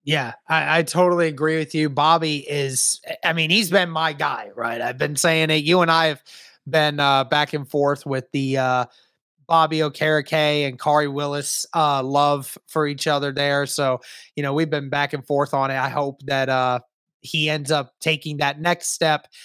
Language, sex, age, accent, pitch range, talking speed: English, male, 20-39, American, 150-180 Hz, 195 wpm